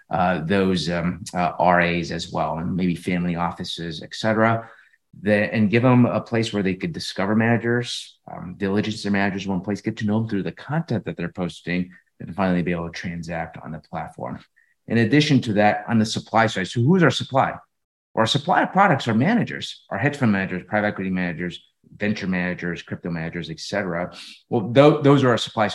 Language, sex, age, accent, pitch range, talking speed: English, male, 30-49, American, 95-120 Hz, 205 wpm